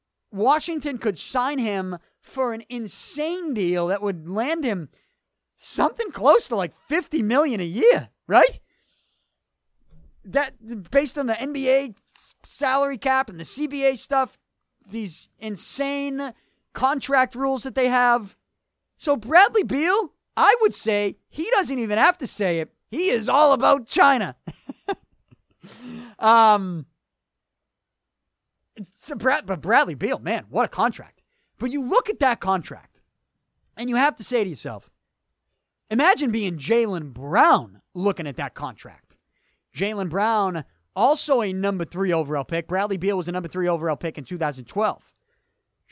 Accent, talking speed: American, 135 wpm